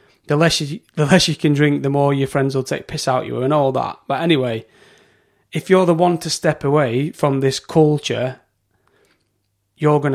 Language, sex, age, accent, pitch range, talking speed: English, male, 30-49, British, 135-150 Hz, 200 wpm